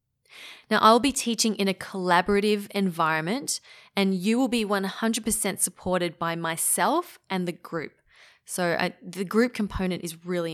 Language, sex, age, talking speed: English, female, 20-39, 140 wpm